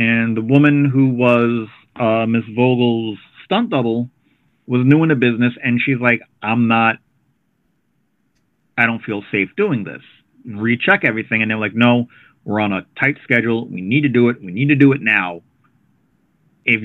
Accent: American